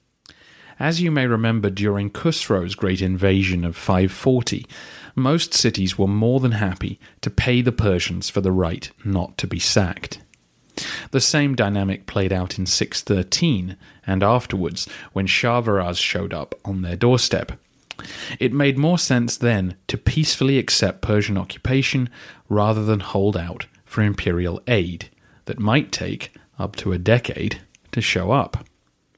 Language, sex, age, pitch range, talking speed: English, male, 30-49, 95-125 Hz, 145 wpm